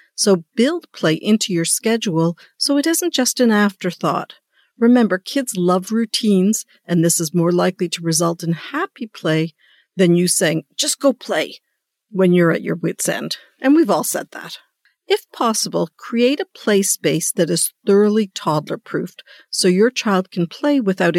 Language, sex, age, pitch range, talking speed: English, female, 50-69, 170-235 Hz, 165 wpm